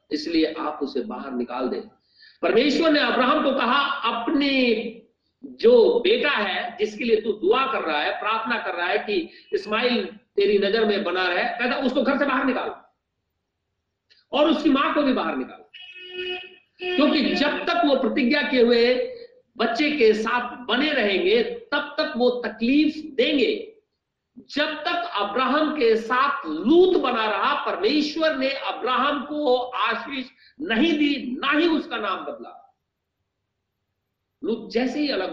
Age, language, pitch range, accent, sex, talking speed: 50-69, Hindi, 205-300 Hz, native, male, 150 wpm